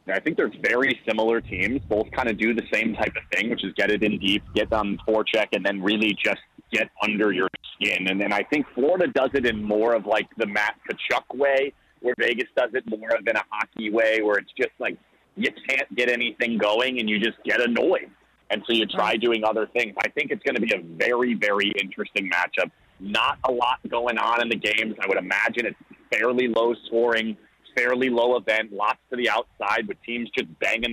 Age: 30-49